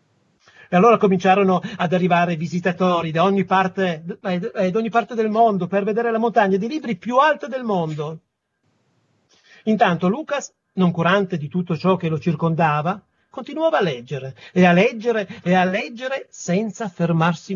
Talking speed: 155 wpm